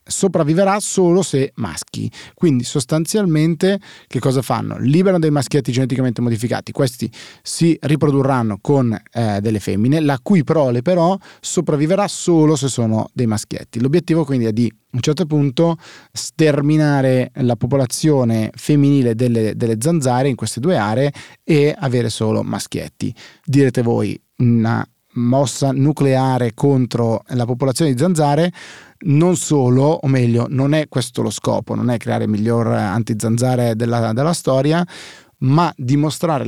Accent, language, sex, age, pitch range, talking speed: native, Italian, male, 30-49, 115-150 Hz, 140 wpm